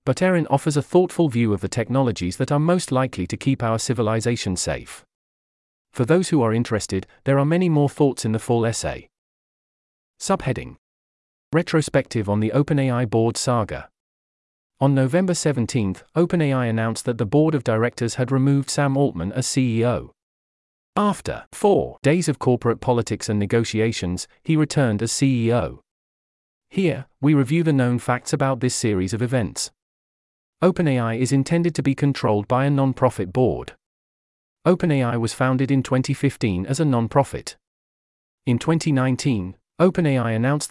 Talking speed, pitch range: 145 wpm, 110-140 Hz